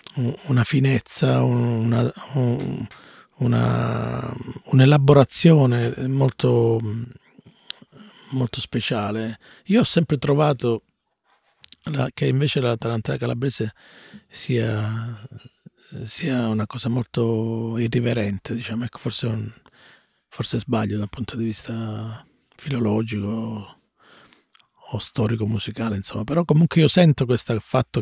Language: Italian